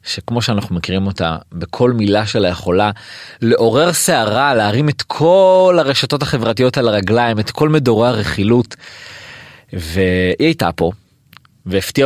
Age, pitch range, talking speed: 30-49, 90-135 Hz, 125 wpm